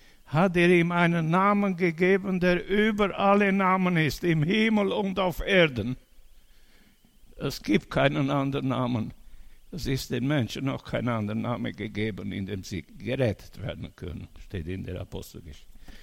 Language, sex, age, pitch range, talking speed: German, male, 60-79, 100-160 Hz, 150 wpm